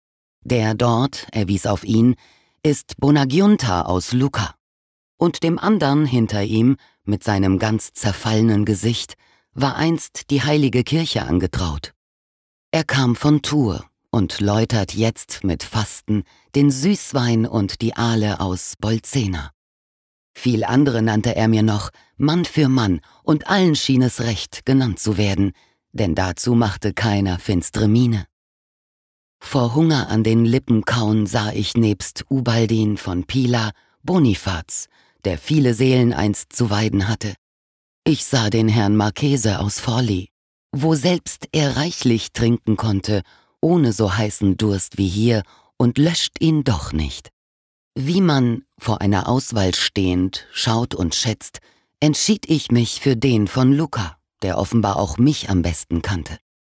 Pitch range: 100-130 Hz